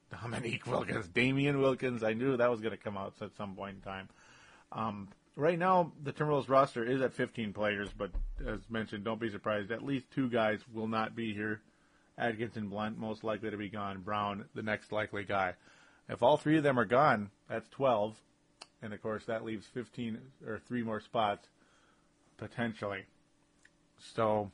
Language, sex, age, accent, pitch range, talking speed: English, male, 30-49, American, 105-125 Hz, 180 wpm